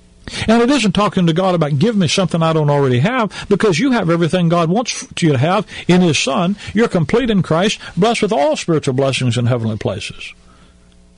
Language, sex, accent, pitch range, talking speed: English, male, American, 140-185 Hz, 205 wpm